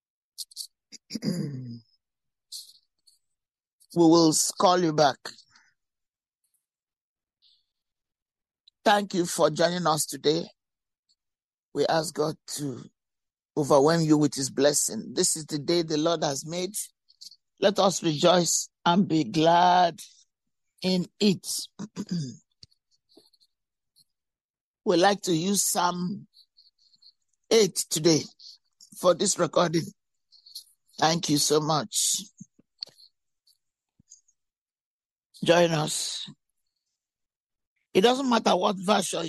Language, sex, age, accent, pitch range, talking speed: English, male, 60-79, Nigerian, 155-195 Hz, 85 wpm